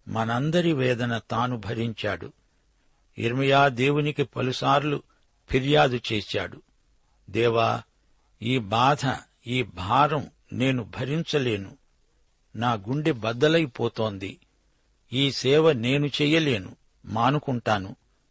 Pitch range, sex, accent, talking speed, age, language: 115-140 Hz, male, native, 80 wpm, 60-79, Telugu